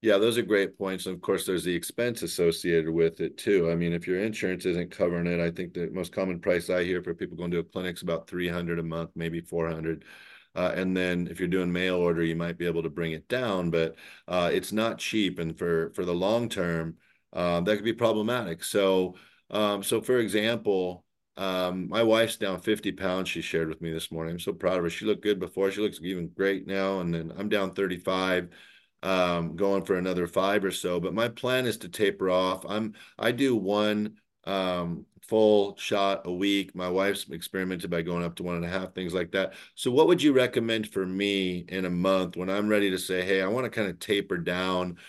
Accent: American